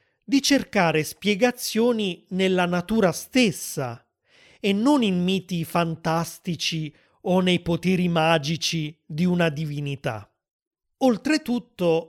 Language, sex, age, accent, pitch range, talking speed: Italian, male, 30-49, native, 160-210 Hz, 95 wpm